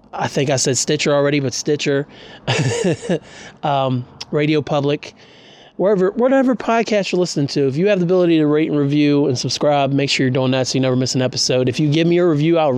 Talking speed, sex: 215 wpm, male